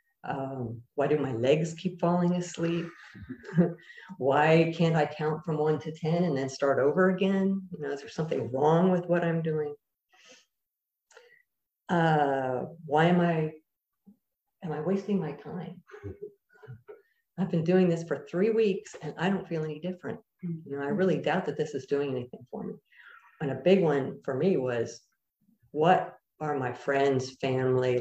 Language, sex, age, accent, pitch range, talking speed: English, female, 50-69, American, 145-190 Hz, 165 wpm